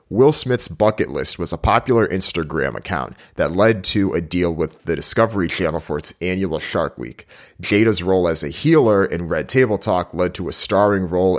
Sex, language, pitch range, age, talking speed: male, English, 85-100 Hz, 30-49, 195 wpm